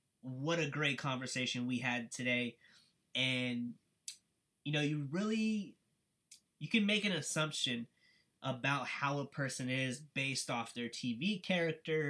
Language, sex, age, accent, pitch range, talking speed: English, male, 20-39, American, 125-145 Hz, 135 wpm